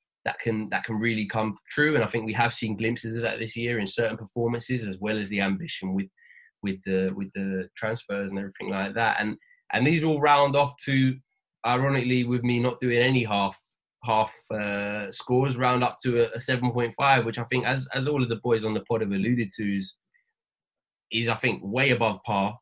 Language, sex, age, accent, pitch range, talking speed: English, male, 20-39, British, 110-130 Hz, 220 wpm